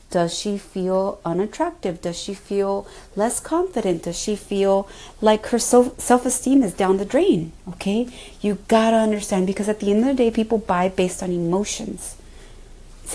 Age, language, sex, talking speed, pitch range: 30-49, English, female, 170 wpm, 185-230 Hz